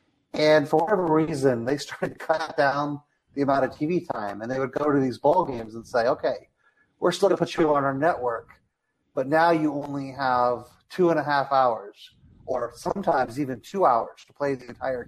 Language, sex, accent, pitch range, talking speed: English, male, American, 130-170 Hz, 205 wpm